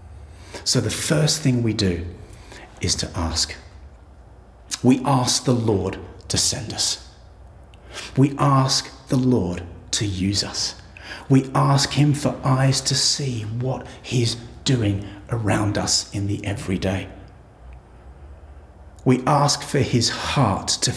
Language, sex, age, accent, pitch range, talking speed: English, male, 40-59, British, 95-135 Hz, 125 wpm